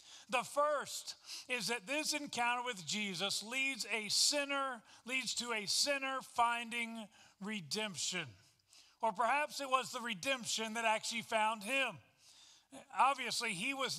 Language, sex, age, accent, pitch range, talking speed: English, male, 40-59, American, 195-245 Hz, 130 wpm